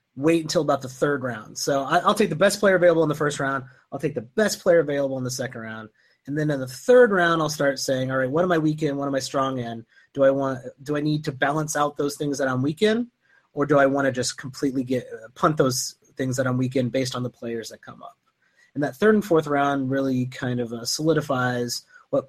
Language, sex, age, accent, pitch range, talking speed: English, male, 30-49, American, 130-155 Hz, 260 wpm